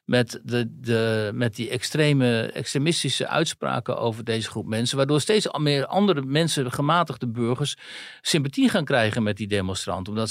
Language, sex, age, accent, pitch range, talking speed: Dutch, male, 60-79, Dutch, 115-140 Hz, 150 wpm